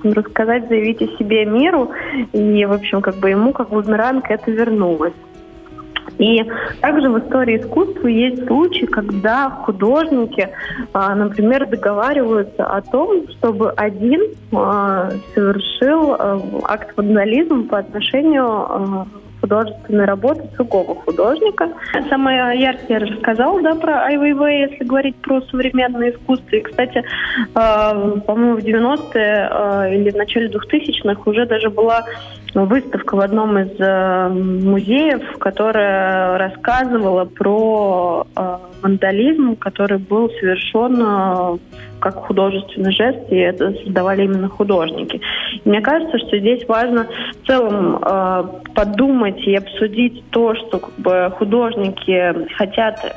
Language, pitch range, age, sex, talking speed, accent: Russian, 195-250 Hz, 20-39, female, 115 wpm, native